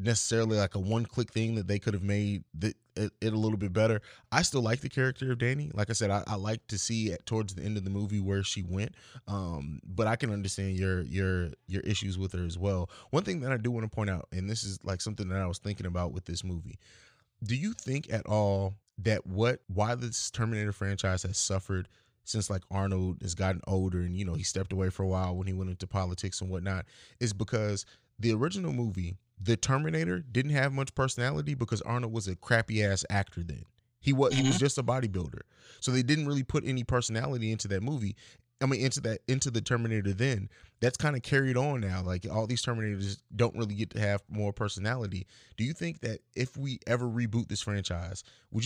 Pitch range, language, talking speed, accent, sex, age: 100-125 Hz, English, 225 wpm, American, male, 20-39